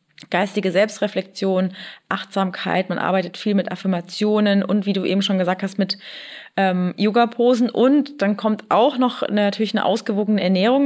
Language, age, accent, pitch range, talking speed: German, 20-39, German, 185-230 Hz, 150 wpm